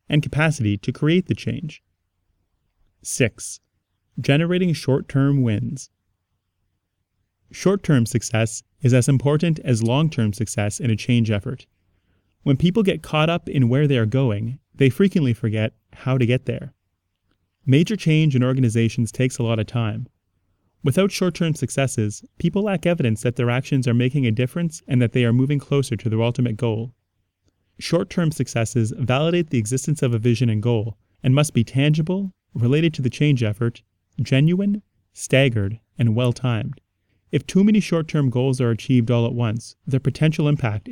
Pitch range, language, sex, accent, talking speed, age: 105-140 Hz, English, male, American, 155 wpm, 30-49